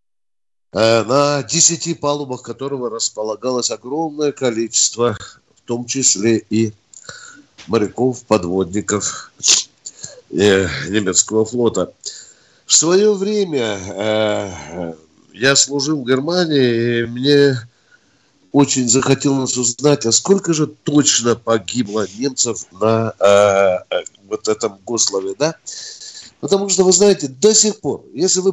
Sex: male